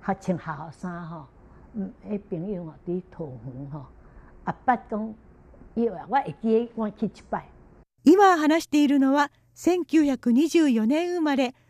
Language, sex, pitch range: Japanese, female, 245-330 Hz